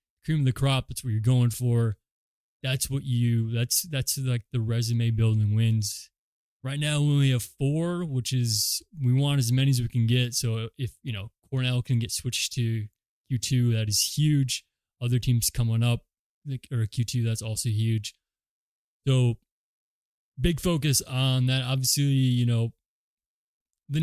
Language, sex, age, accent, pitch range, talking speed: English, male, 20-39, American, 115-135 Hz, 170 wpm